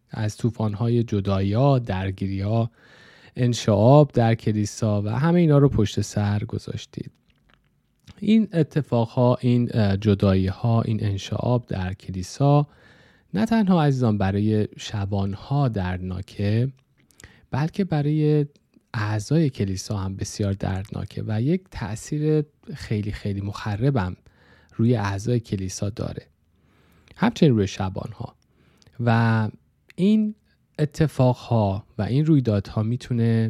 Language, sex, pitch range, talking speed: Persian, male, 100-125 Hz, 110 wpm